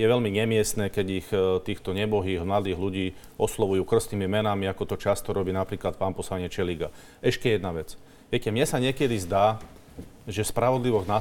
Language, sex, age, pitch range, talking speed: Slovak, male, 40-59, 110-125 Hz, 165 wpm